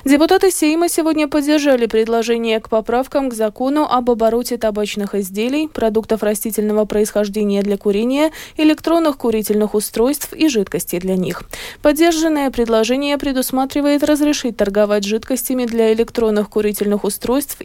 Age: 20-39